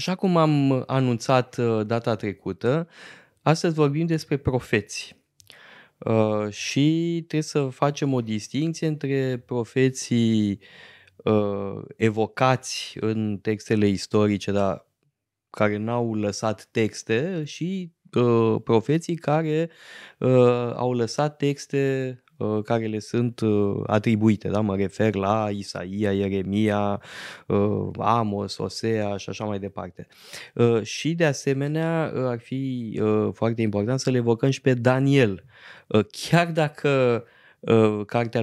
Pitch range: 105-135 Hz